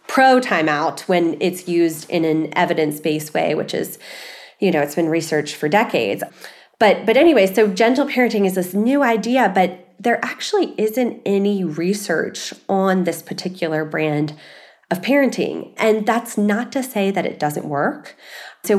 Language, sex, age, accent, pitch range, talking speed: English, female, 20-39, American, 170-210 Hz, 155 wpm